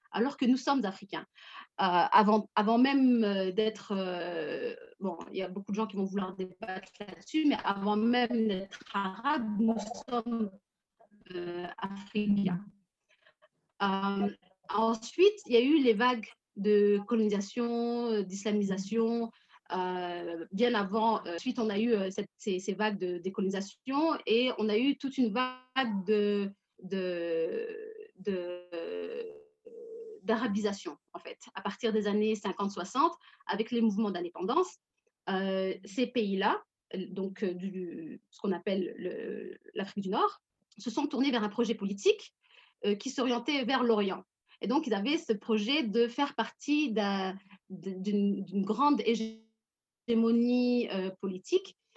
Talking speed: 135 wpm